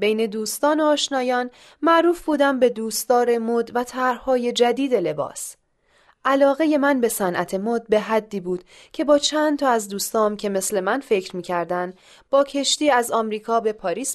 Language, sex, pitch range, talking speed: Persian, female, 210-270 Hz, 160 wpm